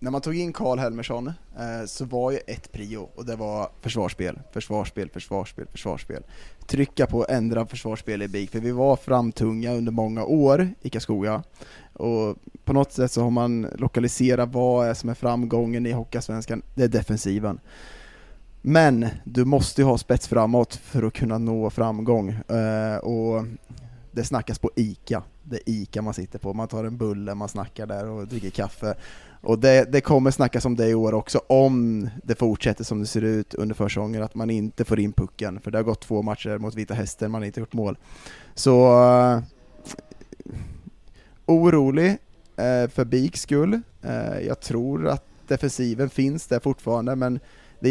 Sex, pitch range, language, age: male, 110-125 Hz, Swedish, 20-39